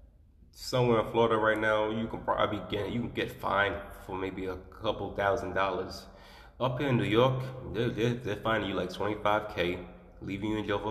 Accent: American